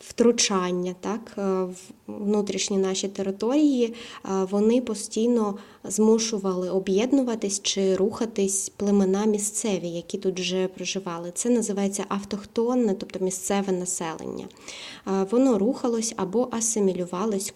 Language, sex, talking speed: Ukrainian, female, 95 wpm